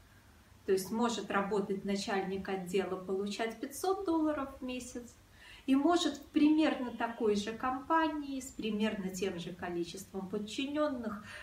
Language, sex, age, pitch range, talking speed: Russian, female, 30-49, 195-275 Hz, 125 wpm